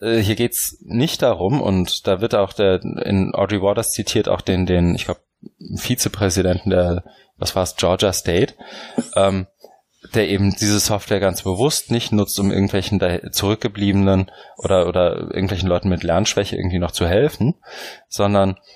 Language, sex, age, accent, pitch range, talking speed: German, male, 20-39, German, 90-110 Hz, 155 wpm